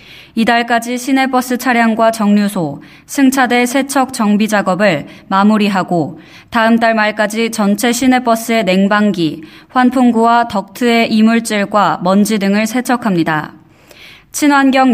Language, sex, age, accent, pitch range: Korean, female, 20-39, native, 200-240 Hz